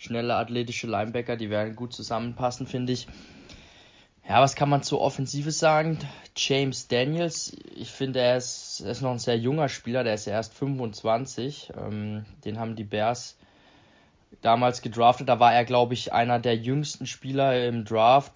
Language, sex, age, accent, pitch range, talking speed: German, male, 20-39, German, 115-135 Hz, 165 wpm